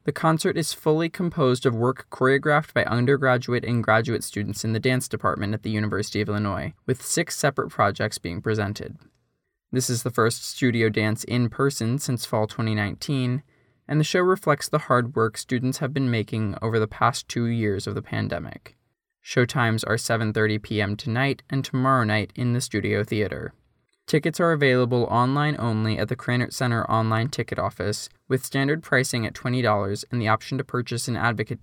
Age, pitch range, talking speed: 20-39, 110-135 Hz, 175 wpm